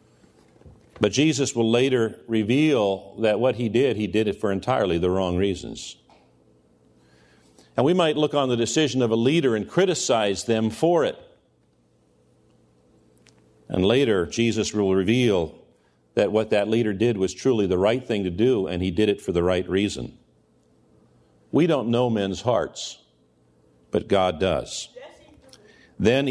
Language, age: English, 50-69